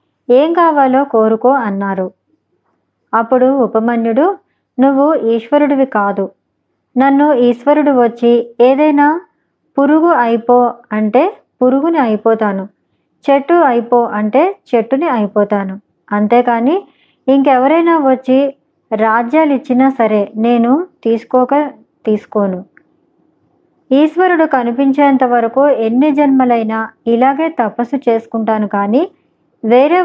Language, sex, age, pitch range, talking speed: Telugu, male, 20-39, 225-285 Hz, 80 wpm